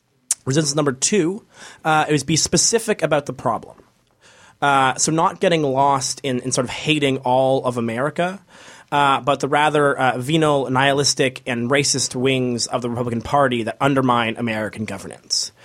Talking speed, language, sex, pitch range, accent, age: 160 wpm, English, male, 130-150 Hz, American, 20-39